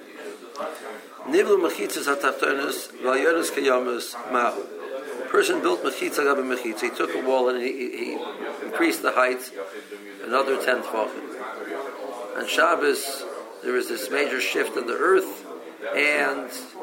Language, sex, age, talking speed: English, male, 50-69, 100 wpm